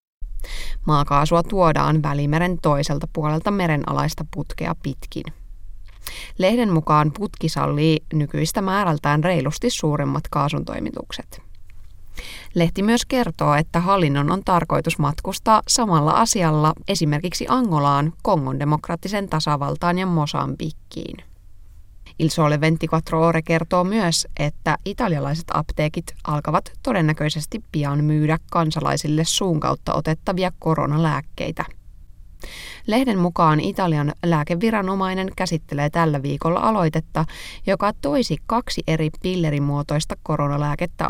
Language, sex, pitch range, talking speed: Finnish, female, 145-180 Hz, 95 wpm